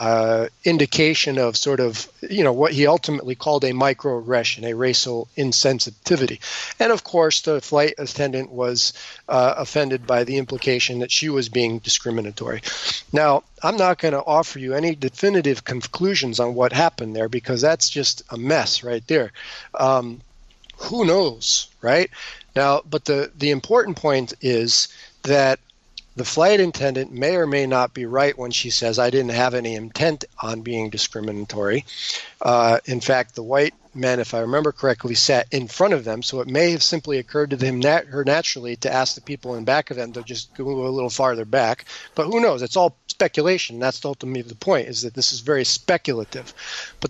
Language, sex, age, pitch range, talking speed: English, male, 40-59, 120-155 Hz, 185 wpm